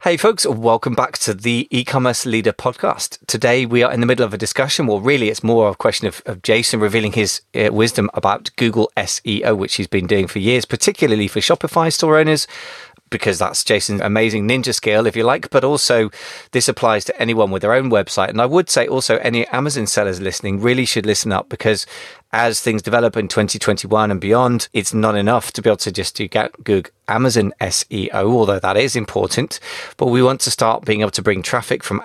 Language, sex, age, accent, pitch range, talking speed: English, male, 20-39, British, 105-125 Hz, 210 wpm